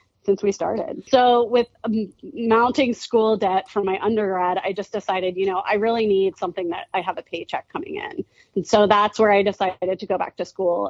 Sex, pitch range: female, 185-225 Hz